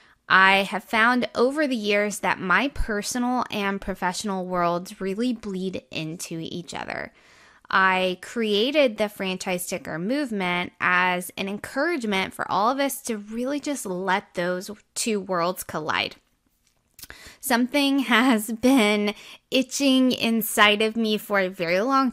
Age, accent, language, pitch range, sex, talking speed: 20-39, American, English, 185-230 Hz, female, 135 wpm